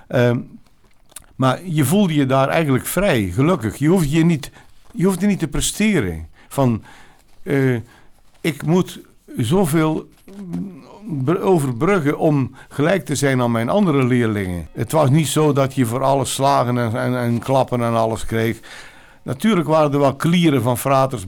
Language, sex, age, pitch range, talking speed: Dutch, male, 60-79, 115-145 Hz, 155 wpm